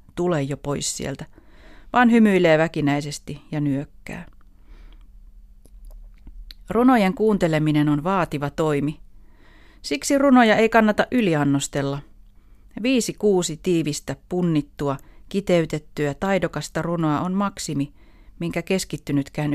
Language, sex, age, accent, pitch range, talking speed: Finnish, female, 30-49, native, 140-190 Hz, 90 wpm